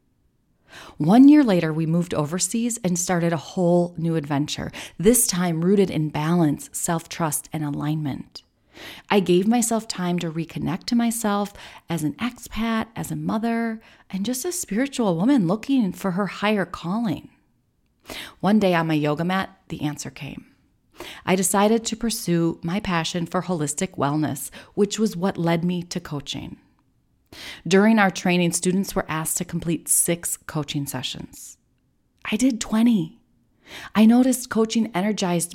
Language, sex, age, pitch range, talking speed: English, female, 30-49, 165-210 Hz, 145 wpm